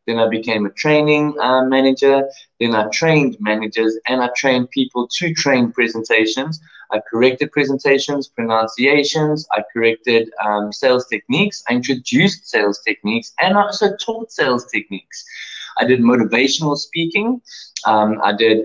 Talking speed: 140 wpm